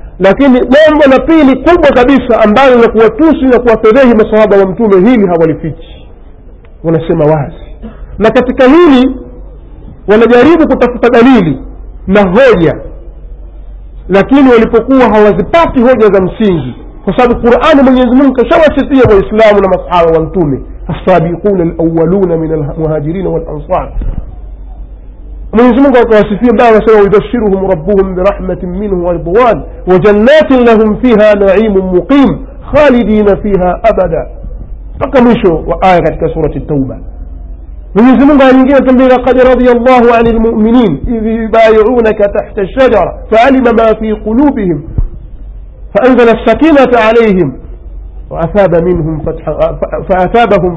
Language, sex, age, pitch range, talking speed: Swahili, male, 50-69, 165-245 Hz, 100 wpm